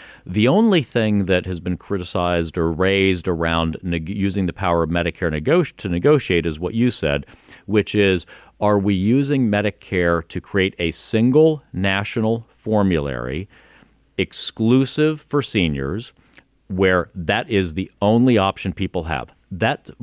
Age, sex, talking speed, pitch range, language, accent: 40-59, male, 135 wpm, 85-110 Hz, English, American